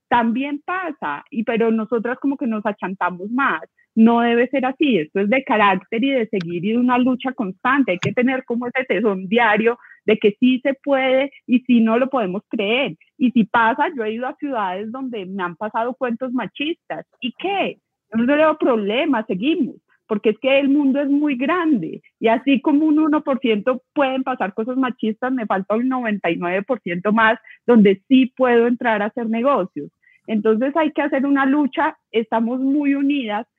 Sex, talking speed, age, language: female, 180 wpm, 30-49, Spanish